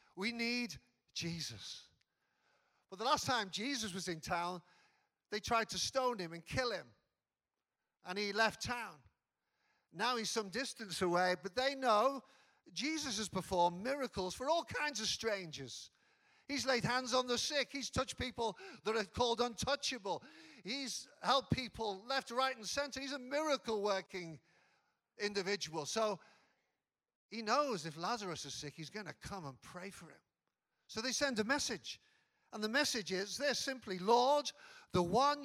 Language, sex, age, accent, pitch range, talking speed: English, male, 50-69, British, 190-270 Hz, 155 wpm